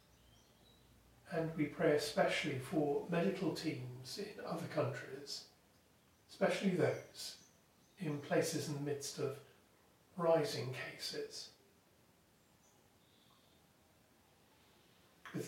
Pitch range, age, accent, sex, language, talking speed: 140-170 Hz, 40-59, British, male, English, 80 wpm